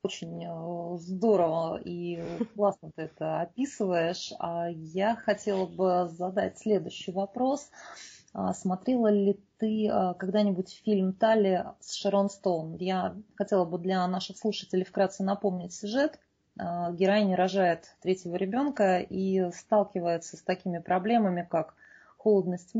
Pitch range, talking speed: 175-215 Hz, 115 wpm